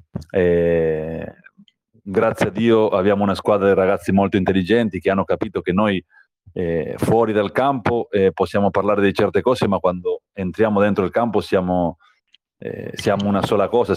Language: Italian